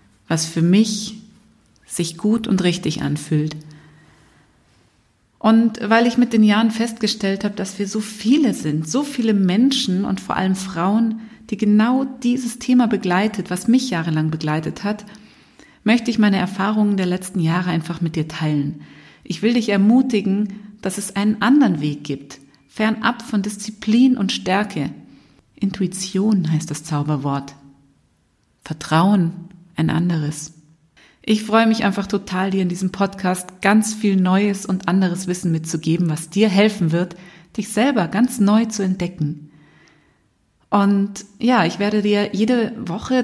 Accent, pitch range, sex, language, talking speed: German, 175-220 Hz, female, German, 145 wpm